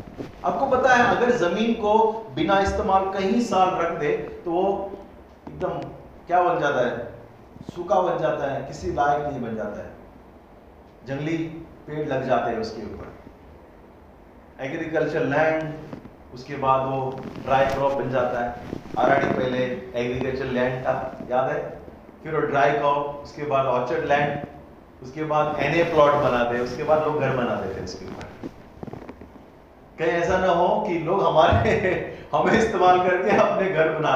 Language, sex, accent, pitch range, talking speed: Hindi, male, native, 130-190 Hz, 120 wpm